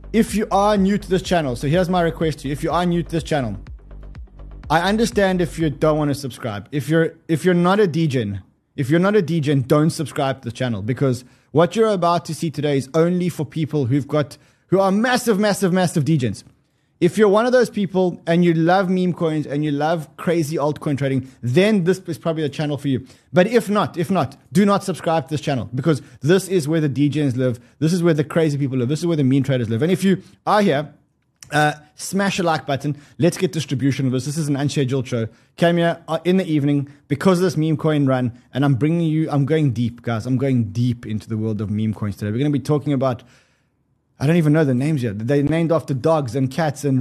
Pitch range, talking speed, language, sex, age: 135-175 Hz, 240 wpm, English, male, 20-39